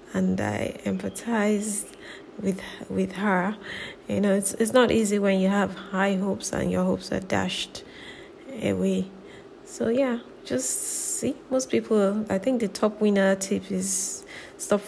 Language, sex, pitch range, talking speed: English, female, 190-225 Hz, 150 wpm